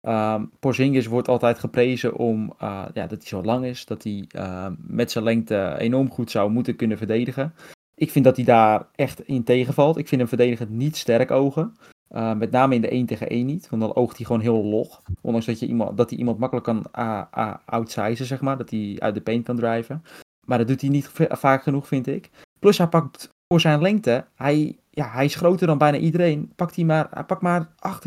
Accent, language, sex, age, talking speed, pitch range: Dutch, Dutch, male, 20-39, 230 wpm, 110-140 Hz